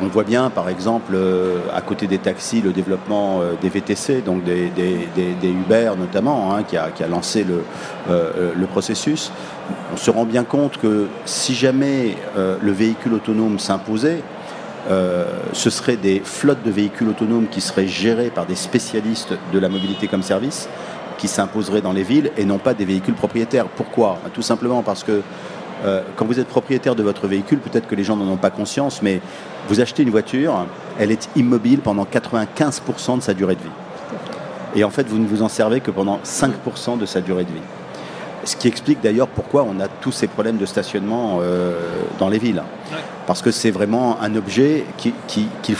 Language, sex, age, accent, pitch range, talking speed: French, male, 40-59, French, 95-115 Hz, 190 wpm